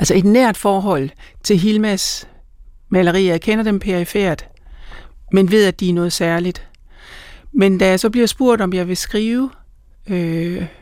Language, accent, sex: Danish, native, male